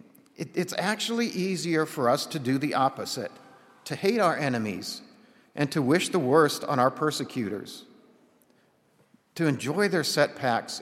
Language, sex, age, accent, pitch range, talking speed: English, male, 50-69, American, 130-195 Hz, 140 wpm